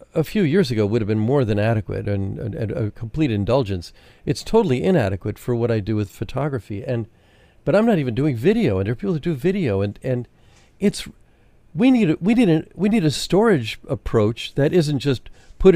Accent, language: American, English